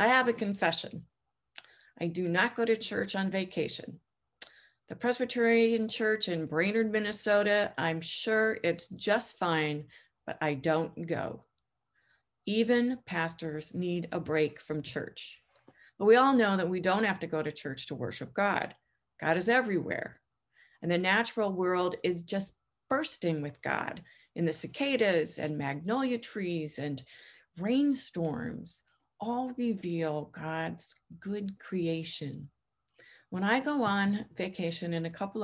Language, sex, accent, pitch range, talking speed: English, female, American, 155-220 Hz, 140 wpm